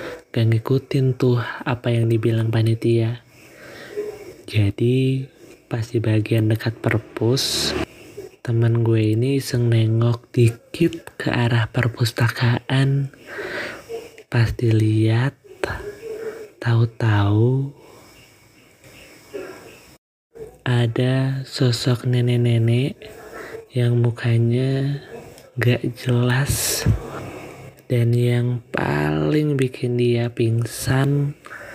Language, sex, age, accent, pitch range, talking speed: Indonesian, male, 20-39, native, 115-135 Hz, 70 wpm